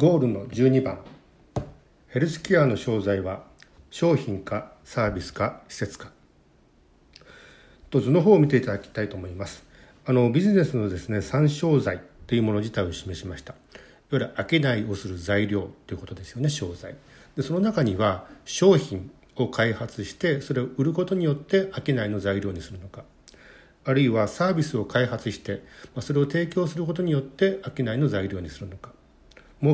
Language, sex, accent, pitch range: Japanese, male, native, 100-145 Hz